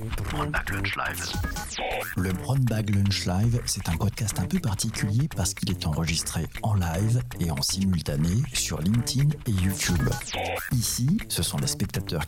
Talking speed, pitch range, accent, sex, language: 140 wpm, 110-155 Hz, French, male, French